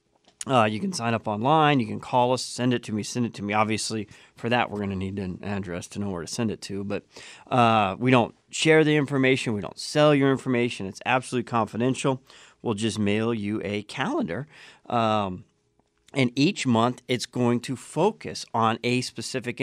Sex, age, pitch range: male, 40-59, 110-125 Hz